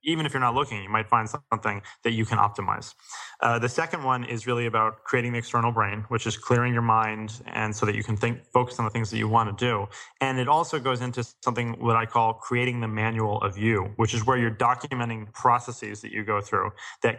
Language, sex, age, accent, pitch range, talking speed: English, male, 20-39, American, 110-125 Hz, 240 wpm